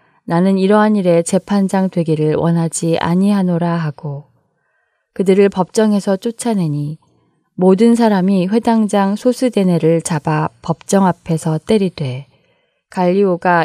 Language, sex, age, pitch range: Korean, female, 10-29, 160-200 Hz